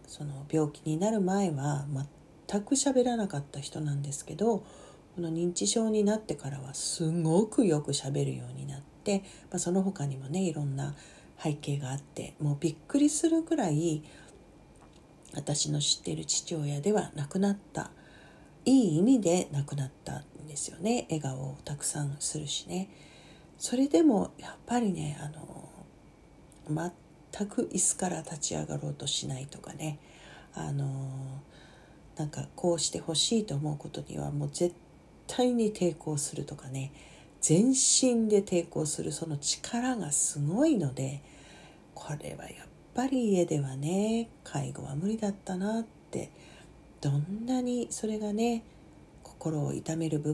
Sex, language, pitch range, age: female, Japanese, 145-200 Hz, 40-59